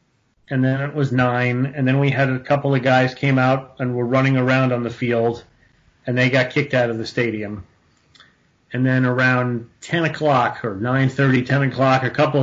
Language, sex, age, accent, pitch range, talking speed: English, male, 40-59, American, 115-135 Hz, 195 wpm